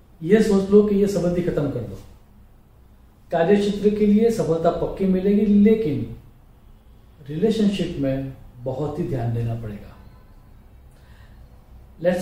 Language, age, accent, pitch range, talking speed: English, 40-59, Indian, 130-195 Hz, 125 wpm